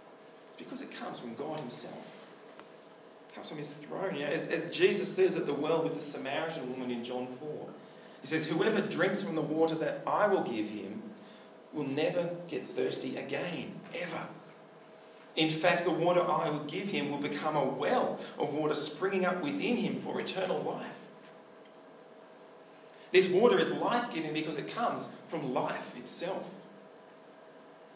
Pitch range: 135-180 Hz